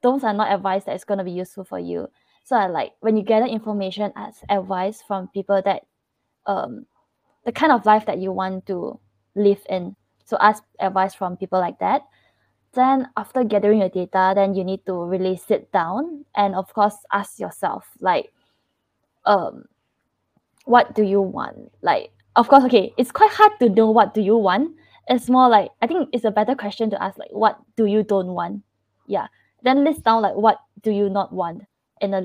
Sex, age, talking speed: female, 10-29, 195 wpm